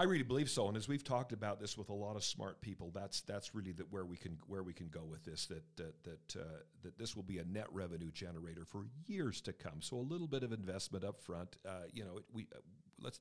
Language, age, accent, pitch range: English, 50-69, American, 95-125 Hz